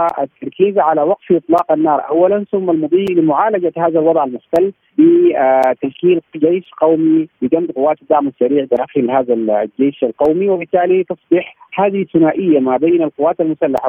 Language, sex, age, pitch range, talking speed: Arabic, male, 40-59, 135-180 Hz, 135 wpm